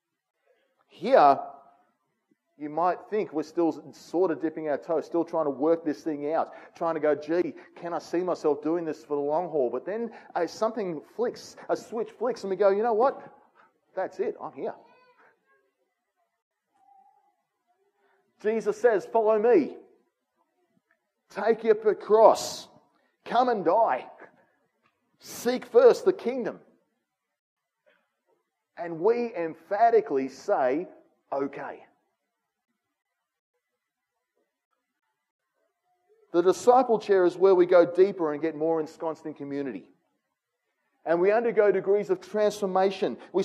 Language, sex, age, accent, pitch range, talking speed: English, male, 40-59, Australian, 165-255 Hz, 125 wpm